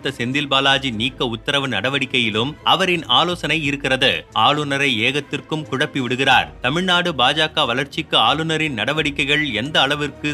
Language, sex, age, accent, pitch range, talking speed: Tamil, male, 30-49, native, 130-150 Hz, 110 wpm